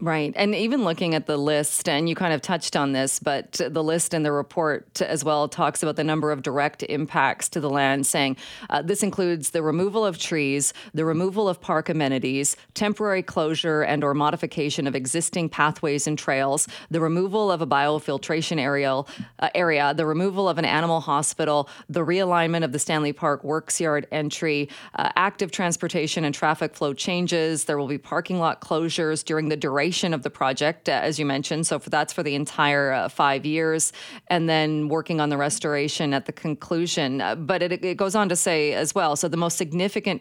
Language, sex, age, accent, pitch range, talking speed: English, female, 30-49, American, 150-175 Hz, 195 wpm